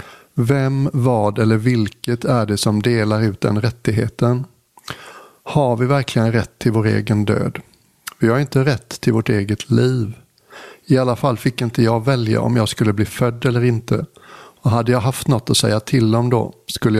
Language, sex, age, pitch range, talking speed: English, male, 60-79, 110-125 Hz, 185 wpm